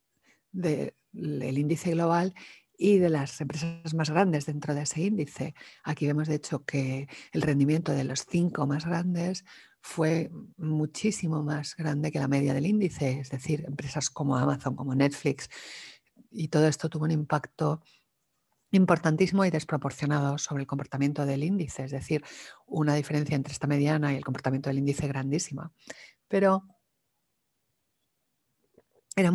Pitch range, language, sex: 145-170 Hz, English, female